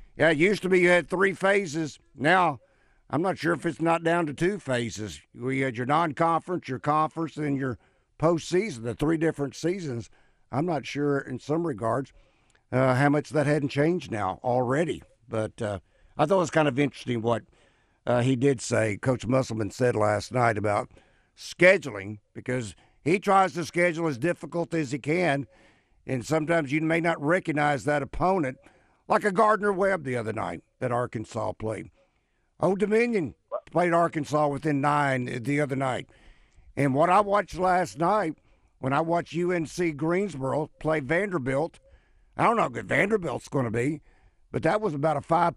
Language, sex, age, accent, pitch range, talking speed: English, male, 60-79, American, 125-170 Hz, 175 wpm